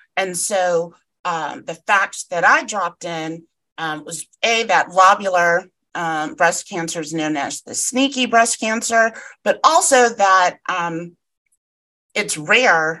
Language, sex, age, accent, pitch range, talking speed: English, female, 30-49, American, 165-215 Hz, 140 wpm